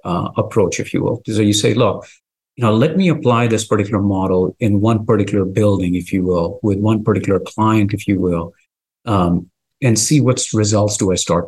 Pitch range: 105-140 Hz